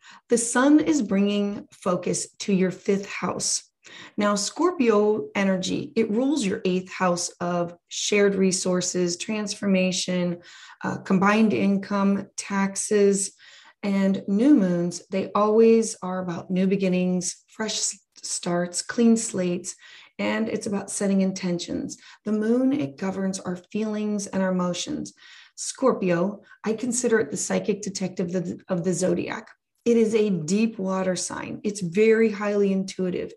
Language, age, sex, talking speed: English, 30-49, female, 130 wpm